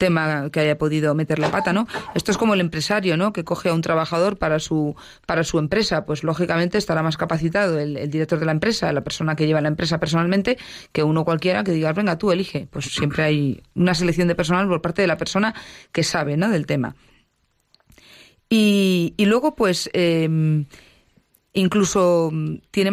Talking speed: 195 wpm